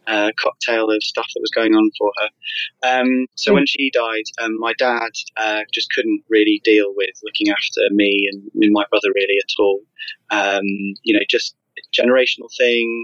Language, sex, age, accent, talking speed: English, male, 20-39, British, 185 wpm